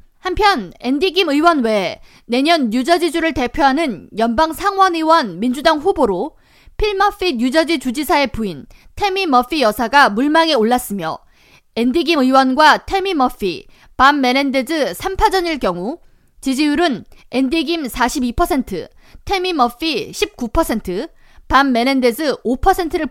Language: Korean